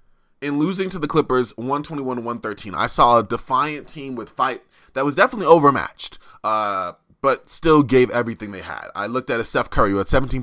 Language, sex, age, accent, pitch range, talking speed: English, male, 20-39, American, 120-145 Hz, 190 wpm